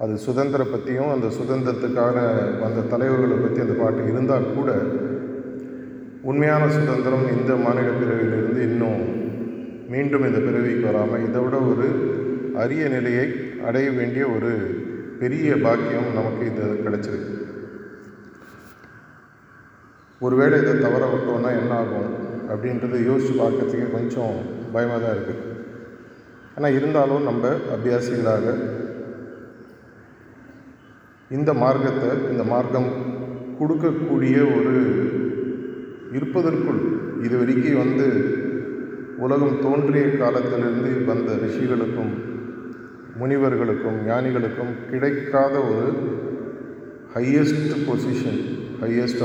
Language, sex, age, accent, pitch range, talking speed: Tamil, male, 30-49, native, 115-130 Hz, 90 wpm